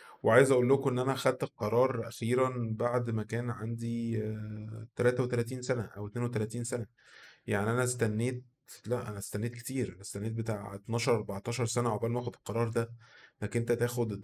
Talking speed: 160 wpm